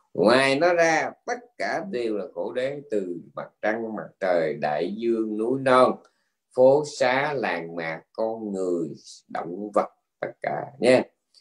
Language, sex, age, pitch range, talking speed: Vietnamese, male, 20-39, 105-140 Hz, 155 wpm